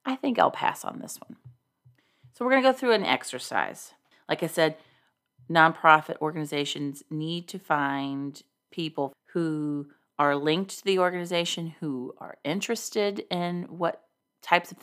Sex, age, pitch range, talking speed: female, 40-59, 145-190 Hz, 150 wpm